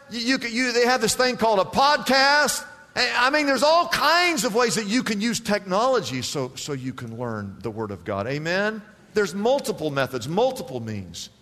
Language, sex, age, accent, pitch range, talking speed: English, male, 50-69, American, 125-215 Hz, 195 wpm